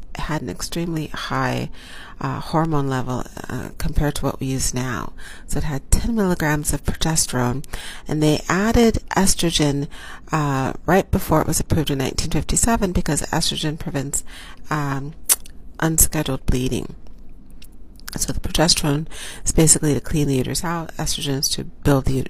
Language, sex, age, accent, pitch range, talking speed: English, female, 40-59, American, 130-160 Hz, 145 wpm